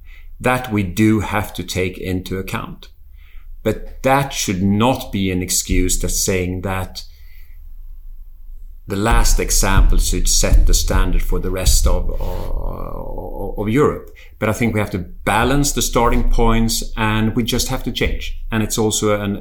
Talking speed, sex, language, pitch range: 160 wpm, male, English, 90-110 Hz